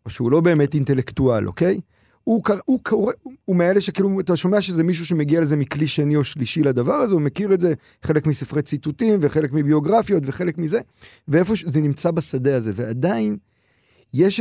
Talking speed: 175 wpm